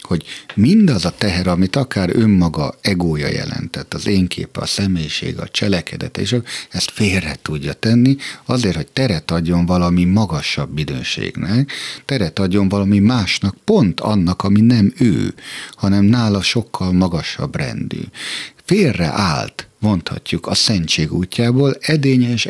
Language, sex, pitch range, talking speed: Hungarian, male, 85-125 Hz, 130 wpm